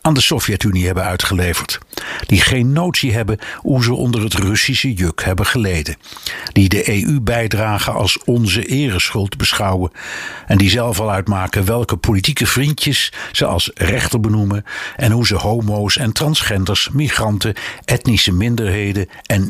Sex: male